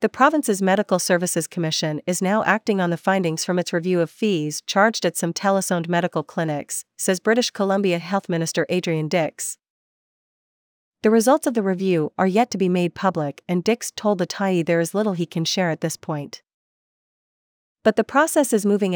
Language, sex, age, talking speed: English, female, 40-59, 185 wpm